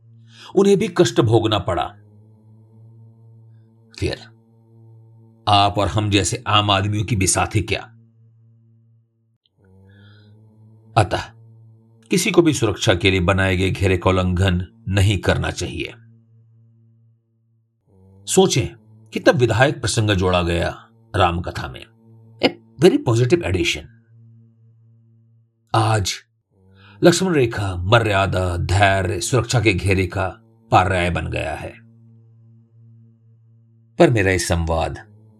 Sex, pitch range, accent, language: male, 100-115 Hz, native, Hindi